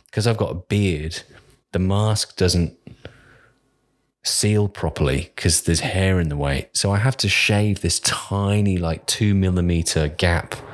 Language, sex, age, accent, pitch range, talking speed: English, male, 30-49, British, 90-120 Hz, 150 wpm